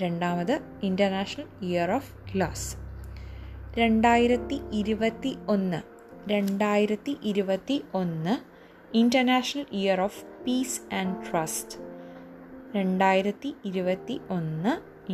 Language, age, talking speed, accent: Malayalam, 20-39, 90 wpm, native